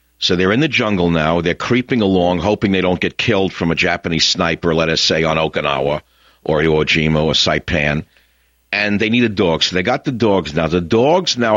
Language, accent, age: English, American, 50-69